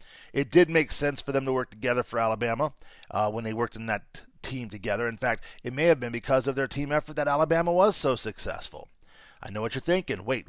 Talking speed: 240 wpm